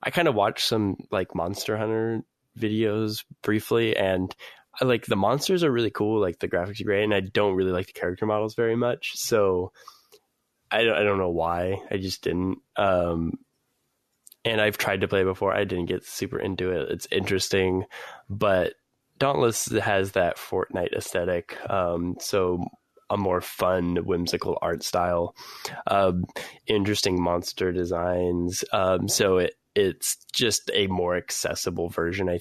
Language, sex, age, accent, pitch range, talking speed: English, male, 10-29, American, 85-100 Hz, 160 wpm